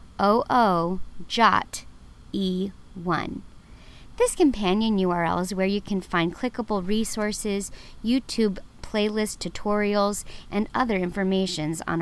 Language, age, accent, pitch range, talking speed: English, 40-59, American, 180-250 Hz, 90 wpm